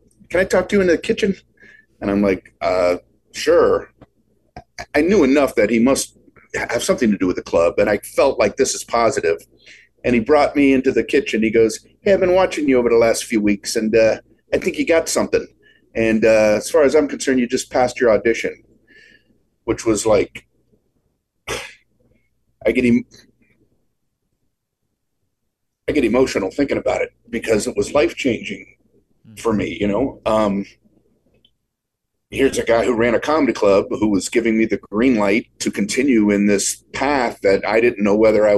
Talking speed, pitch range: 180 wpm, 105-135 Hz